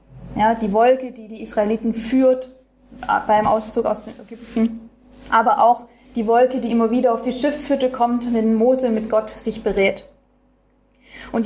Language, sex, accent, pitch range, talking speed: German, female, German, 225-255 Hz, 155 wpm